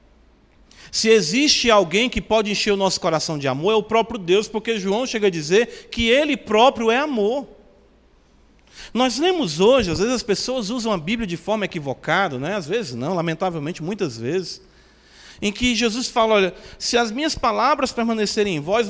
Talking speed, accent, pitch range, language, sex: 180 wpm, Brazilian, 180-230 Hz, Portuguese, male